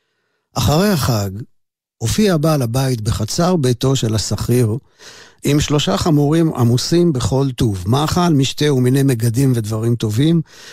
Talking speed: 115 wpm